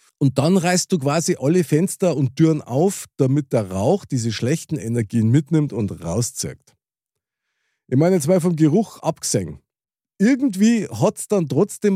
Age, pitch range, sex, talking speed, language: 50-69, 115-175 Hz, male, 155 wpm, German